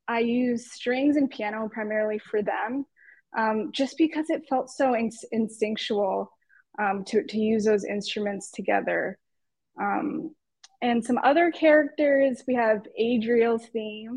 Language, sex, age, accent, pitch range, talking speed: English, female, 20-39, American, 220-255 Hz, 135 wpm